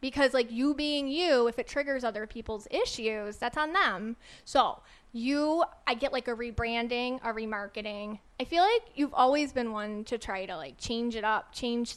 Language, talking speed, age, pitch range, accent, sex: English, 190 wpm, 30-49, 220-265 Hz, American, female